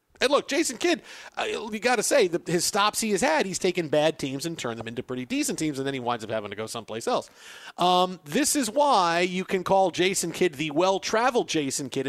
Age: 50-69